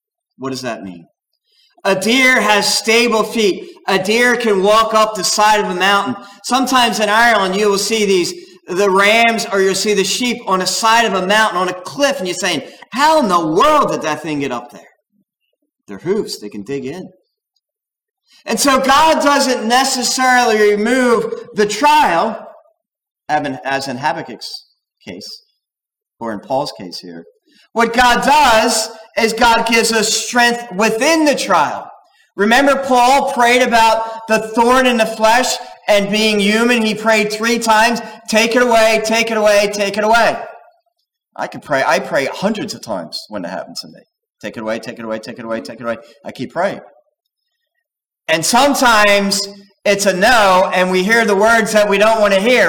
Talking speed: 180 wpm